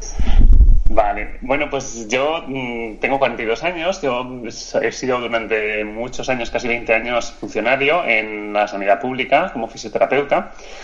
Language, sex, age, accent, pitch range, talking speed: Spanish, male, 30-49, Spanish, 105-135 Hz, 125 wpm